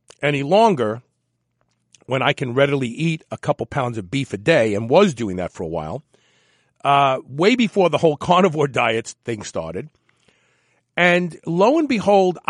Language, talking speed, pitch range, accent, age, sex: English, 165 wpm, 130-190 Hz, American, 50-69, male